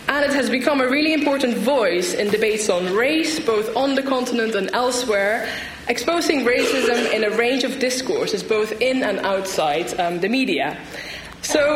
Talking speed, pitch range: 170 wpm, 215-295 Hz